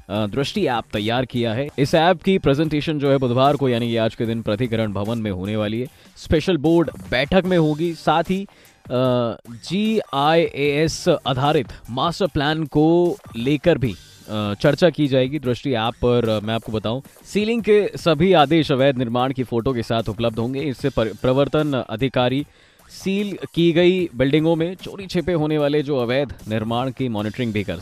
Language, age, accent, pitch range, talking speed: Hindi, 20-39, native, 115-160 Hz, 165 wpm